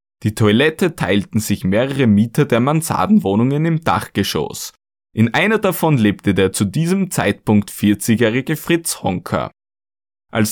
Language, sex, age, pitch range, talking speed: German, male, 20-39, 105-160 Hz, 125 wpm